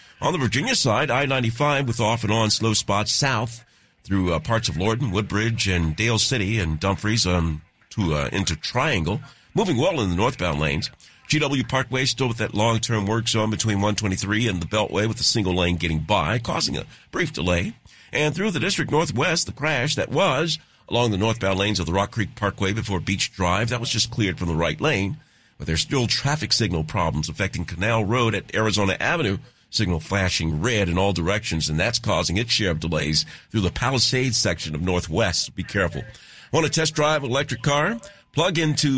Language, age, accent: English, 50-69, American